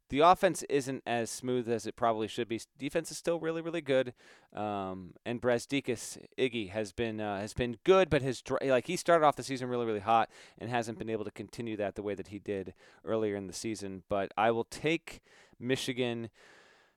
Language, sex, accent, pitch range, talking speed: English, male, American, 105-135 Hz, 205 wpm